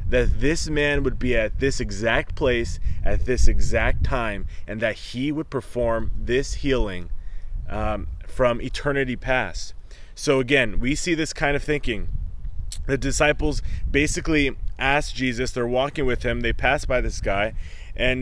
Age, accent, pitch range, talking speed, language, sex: 20-39, American, 105-145 Hz, 155 wpm, English, male